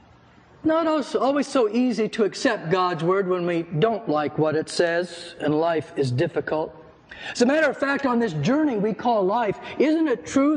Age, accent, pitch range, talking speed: 60-79, American, 185-255 Hz, 195 wpm